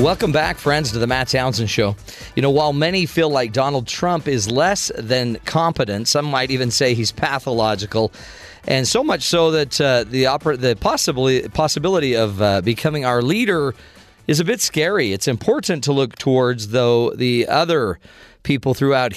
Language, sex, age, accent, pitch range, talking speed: English, male, 40-59, American, 110-150 Hz, 175 wpm